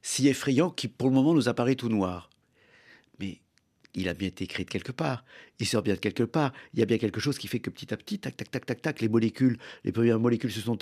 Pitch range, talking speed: 110-140 Hz, 270 wpm